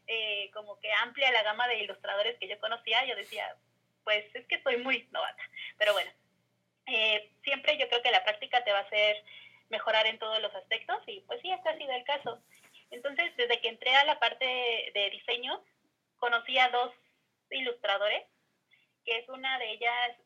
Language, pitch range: Spanish, 215-260 Hz